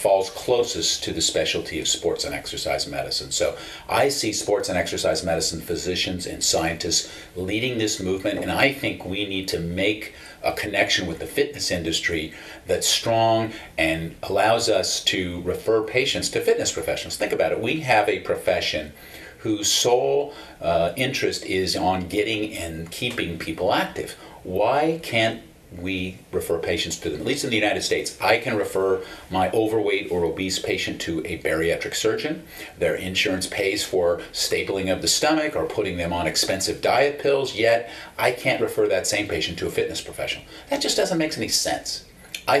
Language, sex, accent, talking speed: English, male, American, 175 wpm